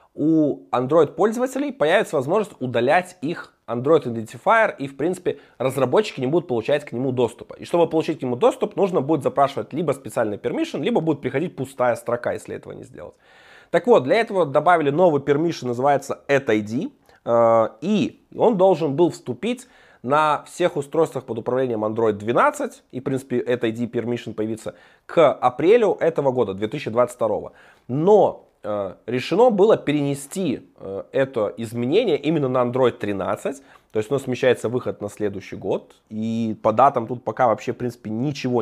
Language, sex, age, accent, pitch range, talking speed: Russian, male, 20-39, native, 120-165 Hz, 155 wpm